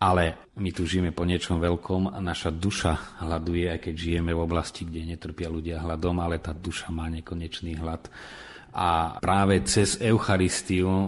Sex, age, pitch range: male, 30-49, 85-90 Hz